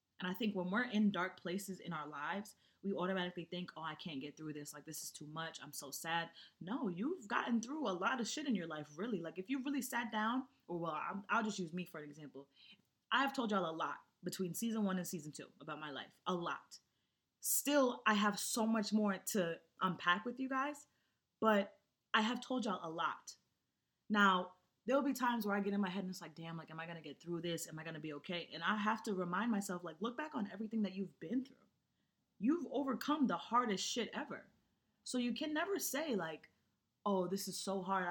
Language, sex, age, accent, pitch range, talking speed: English, female, 20-39, American, 170-225 Hz, 235 wpm